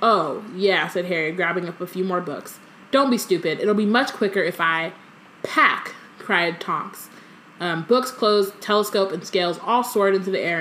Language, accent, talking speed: English, American, 185 wpm